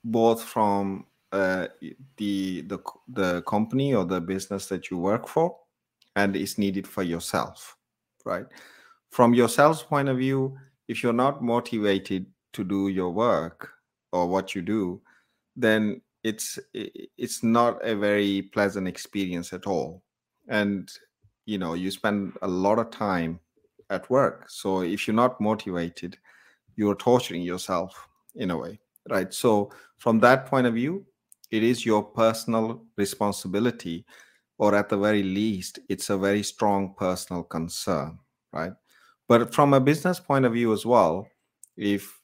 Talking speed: 145 wpm